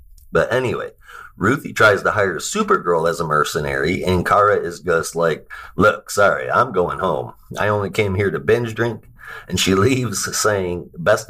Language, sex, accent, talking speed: English, male, American, 170 wpm